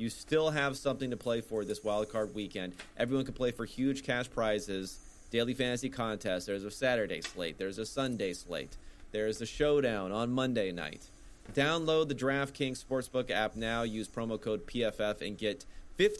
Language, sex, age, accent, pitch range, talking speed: English, male, 30-49, American, 105-125 Hz, 180 wpm